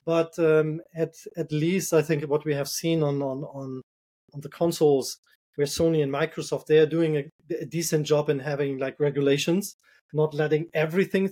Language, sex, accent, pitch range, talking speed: English, male, German, 140-160 Hz, 185 wpm